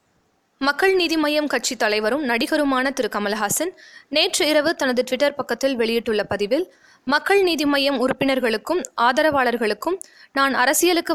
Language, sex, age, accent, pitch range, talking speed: Tamil, female, 20-39, native, 225-295 Hz, 120 wpm